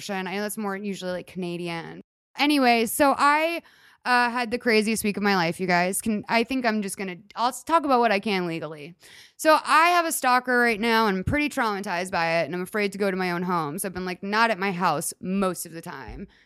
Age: 20-39